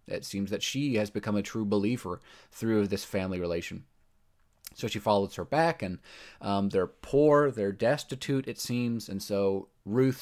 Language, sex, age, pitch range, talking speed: English, male, 30-49, 100-125 Hz, 170 wpm